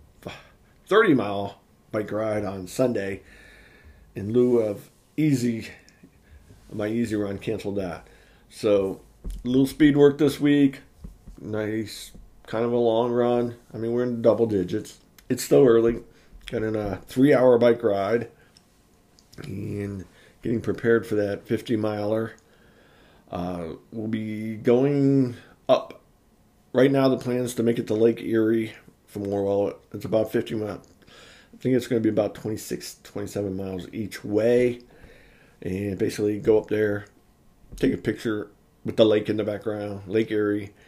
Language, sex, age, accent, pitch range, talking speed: English, male, 40-59, American, 100-120 Hz, 145 wpm